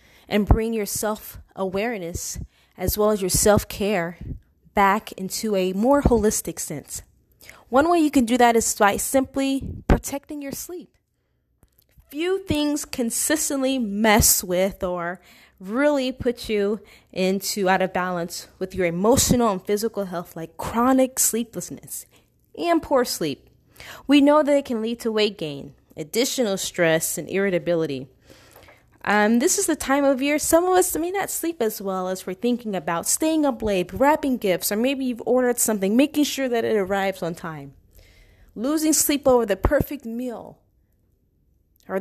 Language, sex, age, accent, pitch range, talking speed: English, female, 20-39, American, 180-260 Hz, 155 wpm